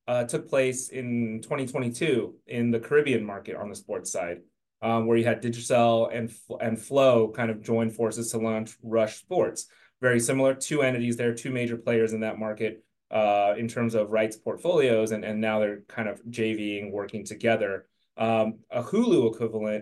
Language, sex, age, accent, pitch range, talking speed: English, male, 30-49, American, 110-120 Hz, 180 wpm